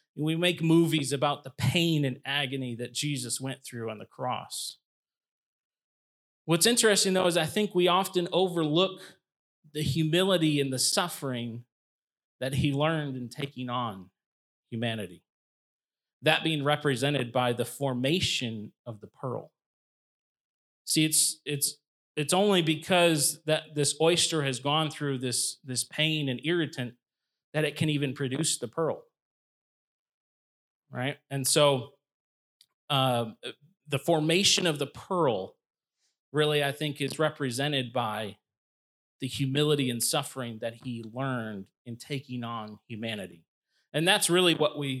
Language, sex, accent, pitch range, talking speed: English, male, American, 125-155 Hz, 135 wpm